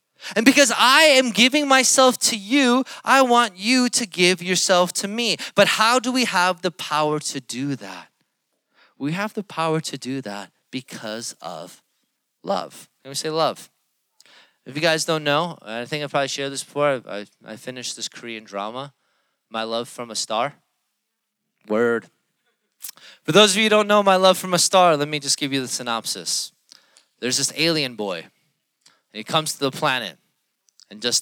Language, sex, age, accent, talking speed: English, male, 20-39, American, 185 wpm